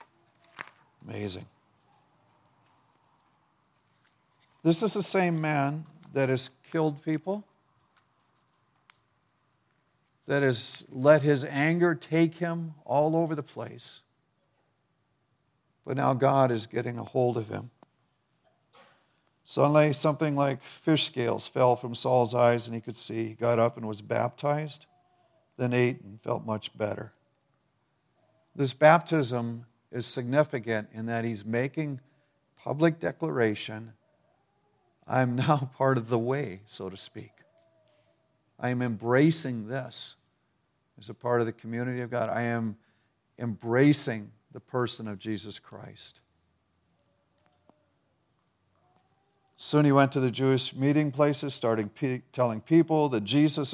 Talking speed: 120 wpm